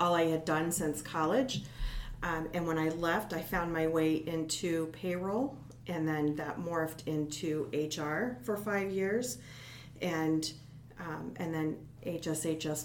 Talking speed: 145 wpm